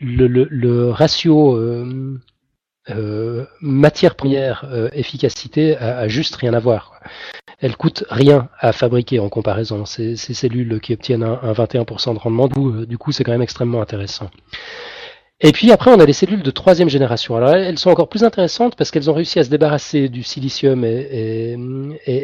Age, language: 40-59, French